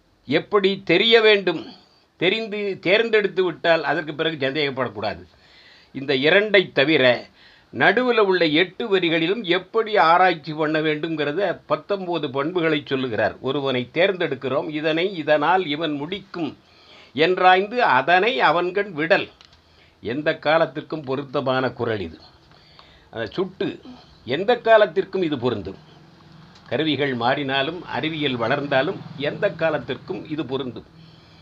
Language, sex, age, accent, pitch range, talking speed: Tamil, male, 50-69, native, 145-185 Hz, 100 wpm